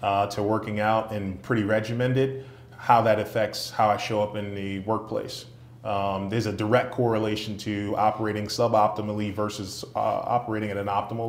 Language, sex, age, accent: English, male, 30-49, American